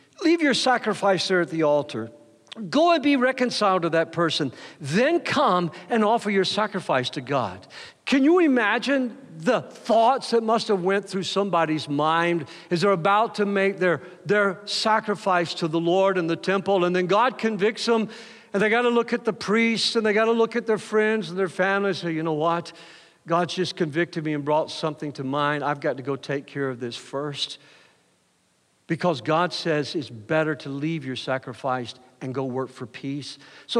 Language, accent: English, American